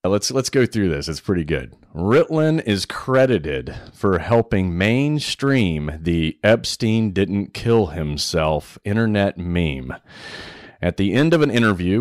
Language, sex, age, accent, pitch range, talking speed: English, male, 30-49, American, 85-115 Hz, 135 wpm